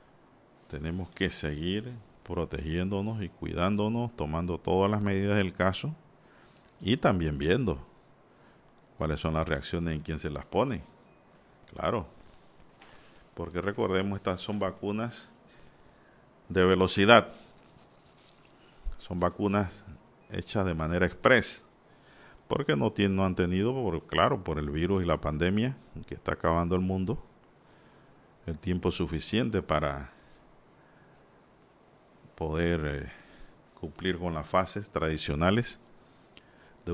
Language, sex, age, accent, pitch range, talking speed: Spanish, male, 50-69, Venezuelan, 80-105 Hz, 110 wpm